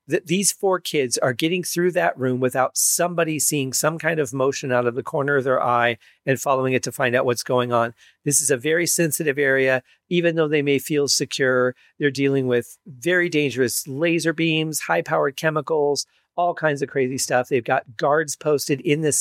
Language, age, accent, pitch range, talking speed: English, 40-59, American, 125-155 Hz, 205 wpm